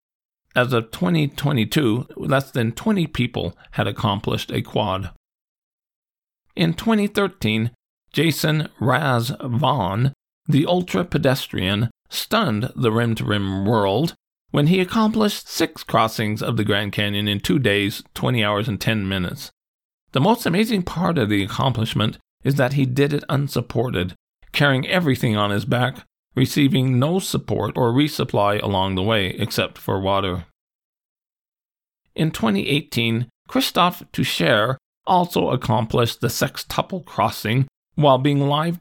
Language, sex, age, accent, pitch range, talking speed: English, male, 40-59, American, 105-150 Hz, 125 wpm